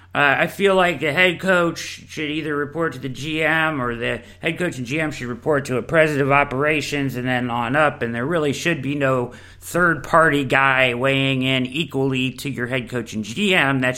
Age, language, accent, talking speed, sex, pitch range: 40-59, English, American, 205 wpm, male, 125-185 Hz